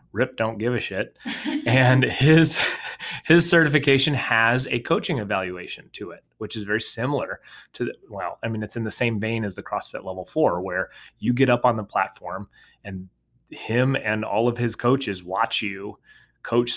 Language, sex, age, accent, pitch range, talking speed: English, male, 30-49, American, 100-125 Hz, 185 wpm